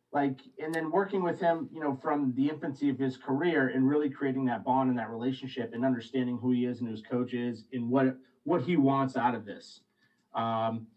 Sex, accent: male, American